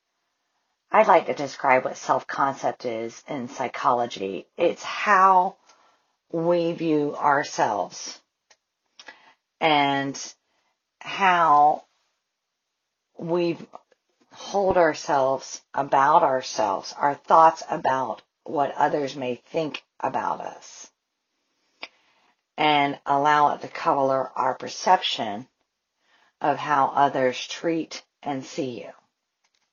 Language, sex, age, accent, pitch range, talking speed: English, female, 40-59, American, 140-175 Hz, 90 wpm